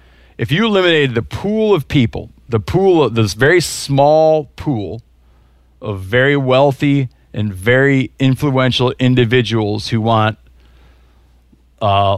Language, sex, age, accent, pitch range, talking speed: English, male, 40-59, American, 95-125 Hz, 120 wpm